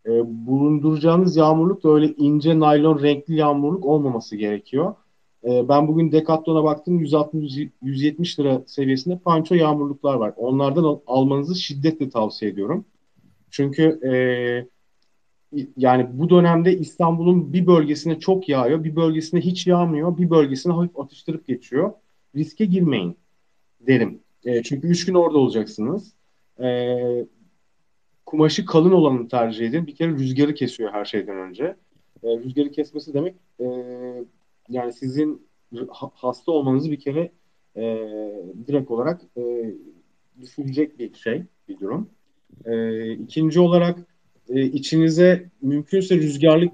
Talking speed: 125 wpm